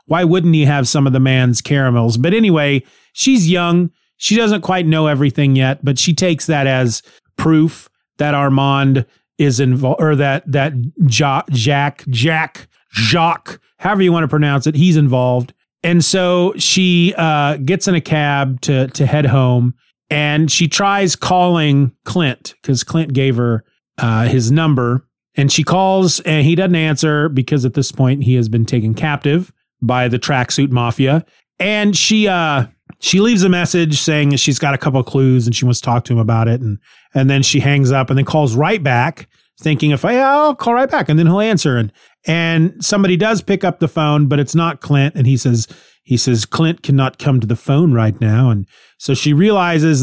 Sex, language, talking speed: male, English, 195 wpm